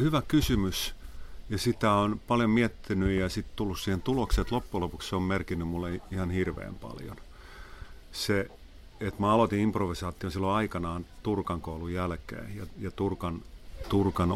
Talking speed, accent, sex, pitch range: 145 wpm, native, male, 85-100 Hz